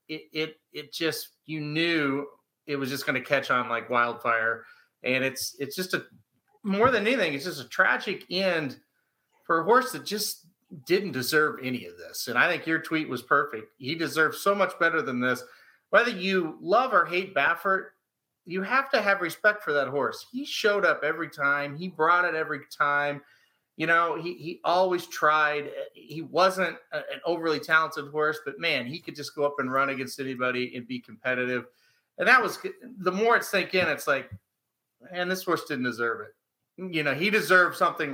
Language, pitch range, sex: English, 130-180 Hz, male